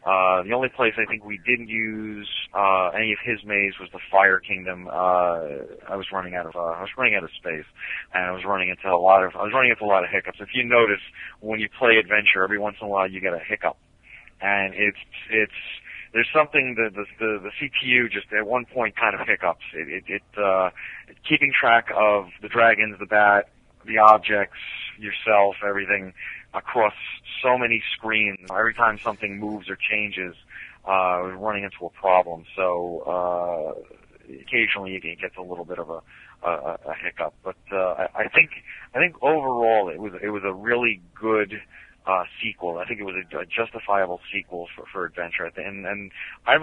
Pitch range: 95-110 Hz